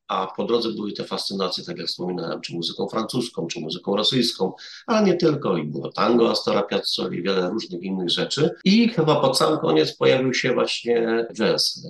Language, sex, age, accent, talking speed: Polish, male, 40-59, native, 180 wpm